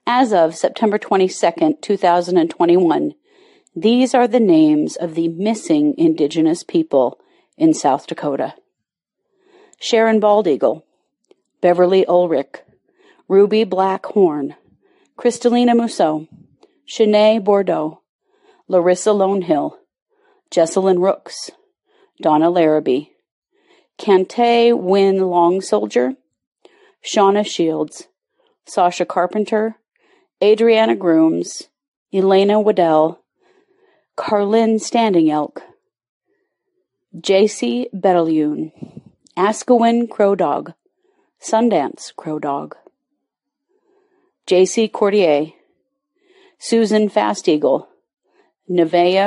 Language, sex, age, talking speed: English, female, 40-59, 75 wpm